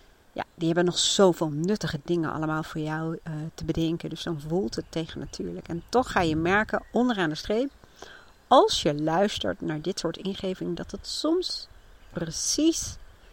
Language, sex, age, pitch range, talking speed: Dutch, female, 40-59, 160-200 Hz, 170 wpm